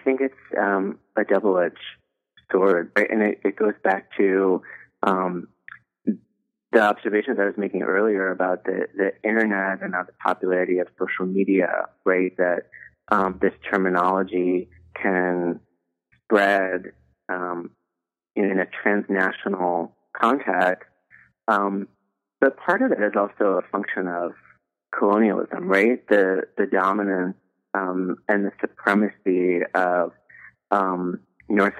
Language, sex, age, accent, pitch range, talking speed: English, male, 30-49, American, 90-100 Hz, 125 wpm